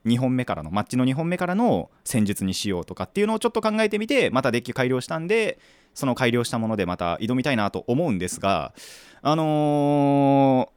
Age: 20-39